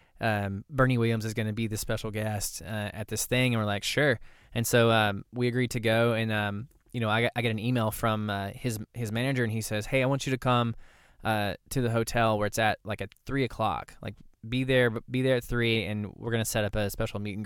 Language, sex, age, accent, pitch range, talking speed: English, male, 20-39, American, 105-125 Hz, 260 wpm